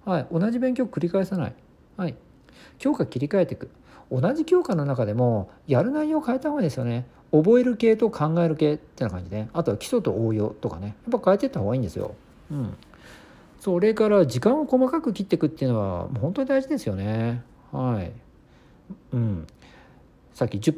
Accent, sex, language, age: native, male, Japanese, 50-69